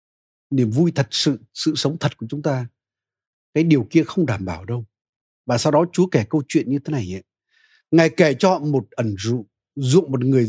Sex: male